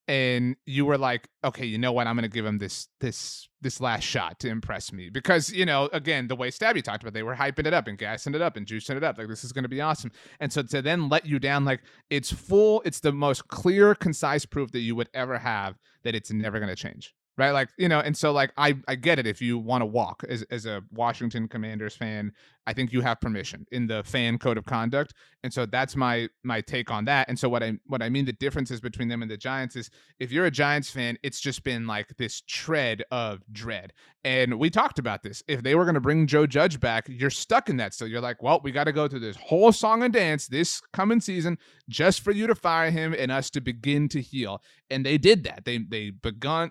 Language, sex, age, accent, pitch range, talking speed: English, male, 30-49, American, 120-150 Hz, 255 wpm